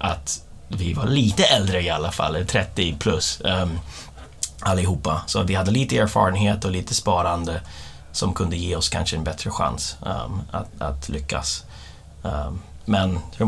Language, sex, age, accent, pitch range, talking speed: Swedish, male, 30-49, native, 80-105 Hz, 145 wpm